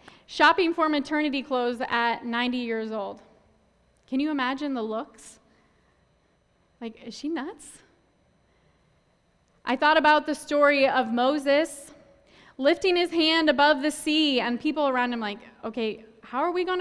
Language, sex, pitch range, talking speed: English, female, 230-300 Hz, 145 wpm